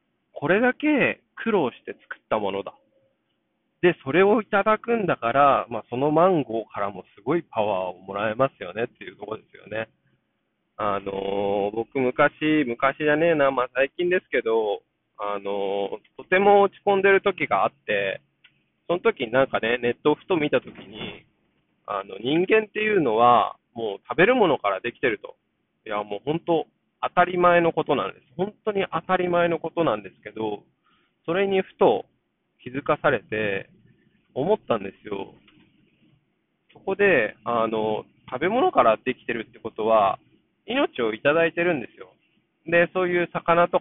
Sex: male